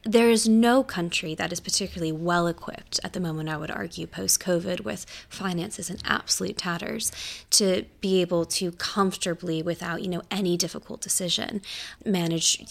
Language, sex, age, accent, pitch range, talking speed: English, female, 20-39, American, 175-200 Hz, 150 wpm